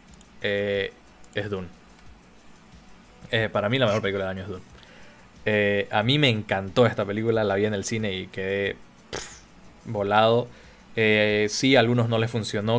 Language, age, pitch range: Spanish, 20-39, 100-110 Hz